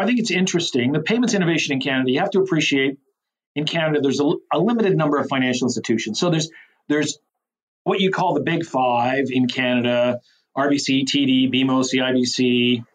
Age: 40-59